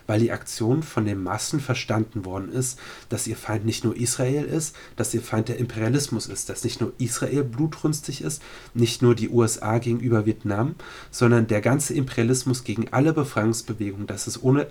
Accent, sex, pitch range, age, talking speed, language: German, male, 105-130 Hz, 30-49, 180 wpm, German